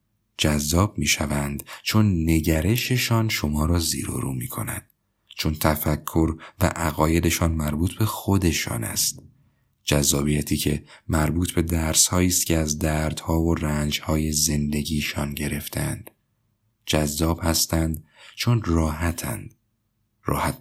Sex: male